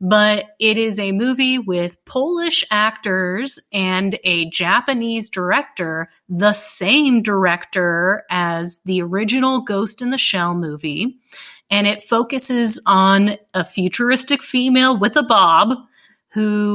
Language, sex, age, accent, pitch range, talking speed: English, female, 30-49, American, 185-230 Hz, 120 wpm